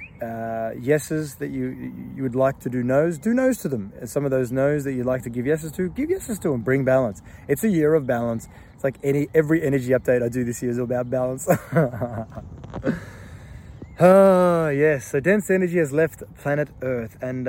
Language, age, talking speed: English, 20-39, 205 wpm